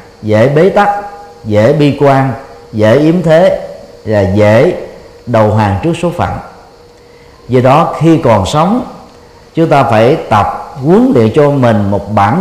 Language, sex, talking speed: Vietnamese, male, 150 wpm